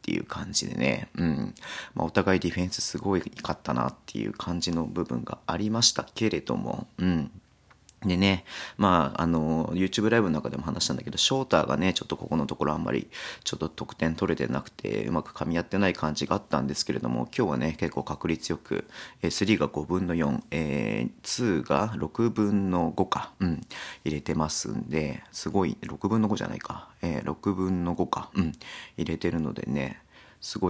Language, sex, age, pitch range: Japanese, male, 40-59, 80-100 Hz